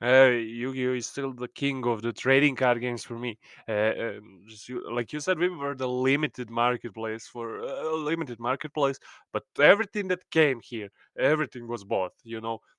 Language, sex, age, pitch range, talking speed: English, male, 20-39, 125-155 Hz, 170 wpm